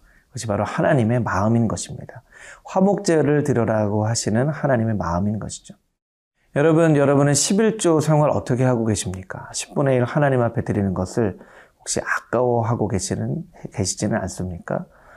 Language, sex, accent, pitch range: Korean, male, native, 100-135 Hz